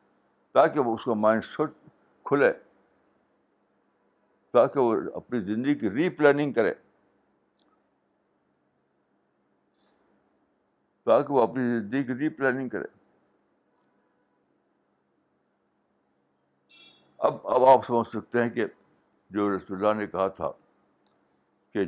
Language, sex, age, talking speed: Urdu, male, 60-79, 100 wpm